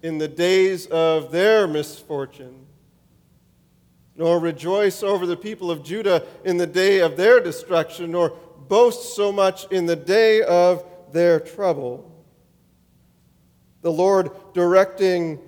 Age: 40-59